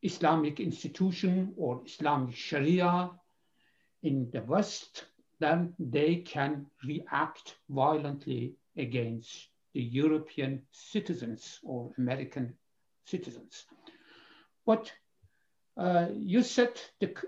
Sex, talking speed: male, 85 wpm